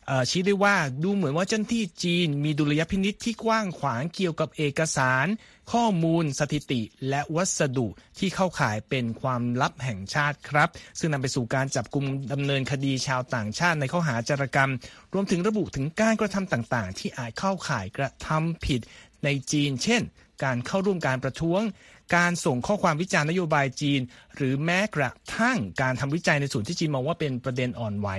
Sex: male